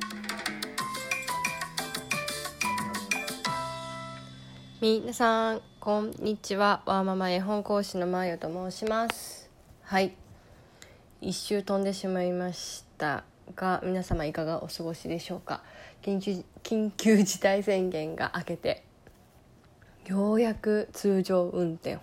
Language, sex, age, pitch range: Japanese, female, 20-39, 165-205 Hz